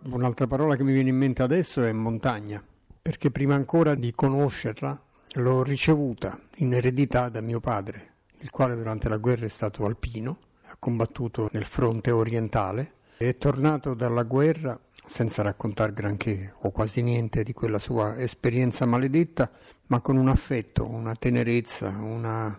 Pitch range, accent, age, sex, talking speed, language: 115-135 Hz, native, 60-79, male, 155 wpm, Italian